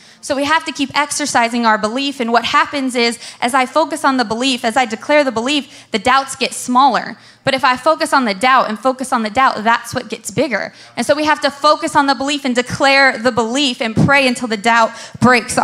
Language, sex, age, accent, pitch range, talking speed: English, female, 20-39, American, 230-280 Hz, 240 wpm